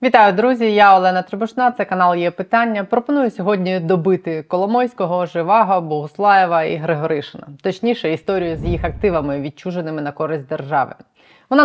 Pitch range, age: 155-205 Hz, 20-39